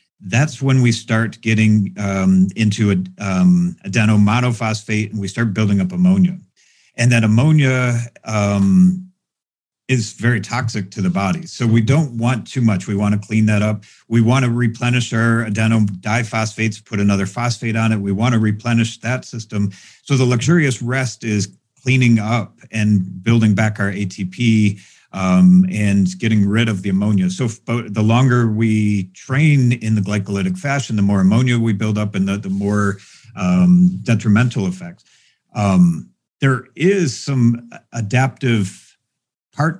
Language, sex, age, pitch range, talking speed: English, male, 50-69, 105-125 Hz, 155 wpm